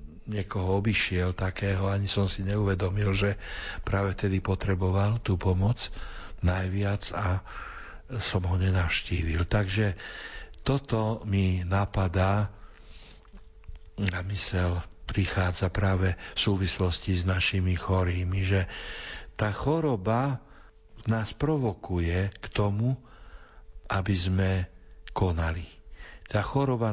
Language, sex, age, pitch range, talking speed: Slovak, male, 60-79, 95-110 Hz, 100 wpm